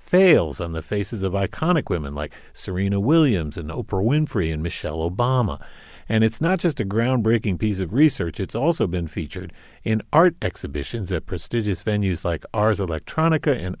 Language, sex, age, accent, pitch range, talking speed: English, male, 50-69, American, 95-130 Hz, 170 wpm